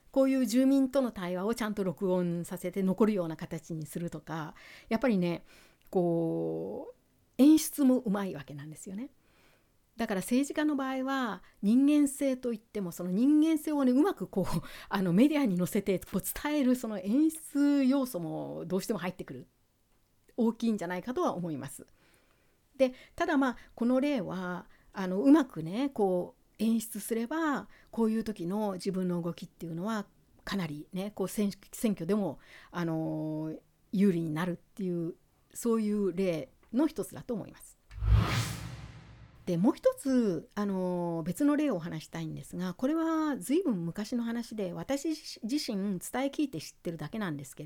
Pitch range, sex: 170-250 Hz, female